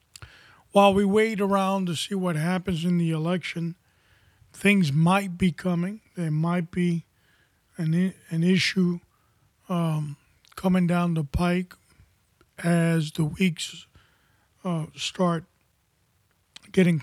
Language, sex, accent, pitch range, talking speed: English, male, American, 165-185 Hz, 115 wpm